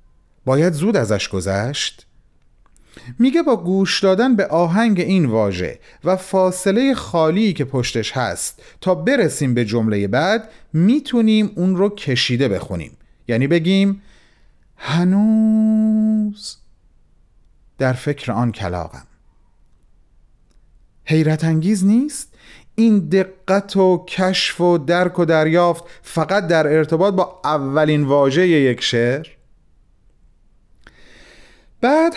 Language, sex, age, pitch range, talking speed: Persian, male, 40-59, 120-195 Hz, 105 wpm